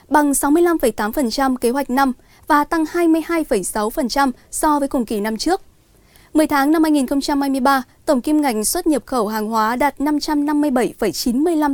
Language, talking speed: Vietnamese, 150 wpm